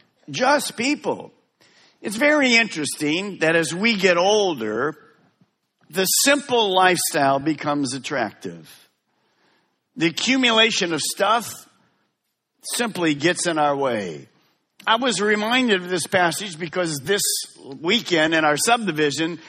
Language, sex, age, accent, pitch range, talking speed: English, male, 50-69, American, 160-210 Hz, 110 wpm